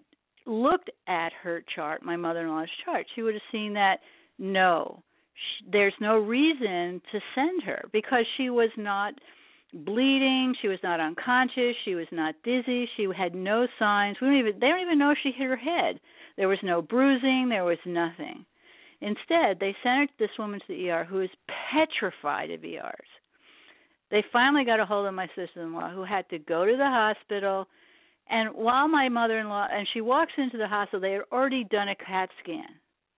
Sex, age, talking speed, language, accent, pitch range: female, 50-69, 185 wpm, English, American, 195-260 Hz